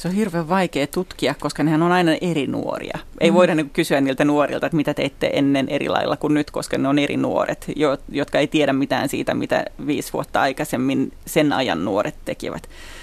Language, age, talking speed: Finnish, 30-49, 195 wpm